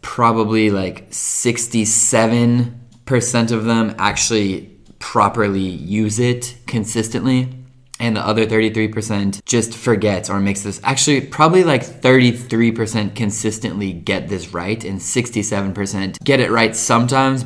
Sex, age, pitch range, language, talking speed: male, 20-39, 100-125 Hz, Italian, 115 wpm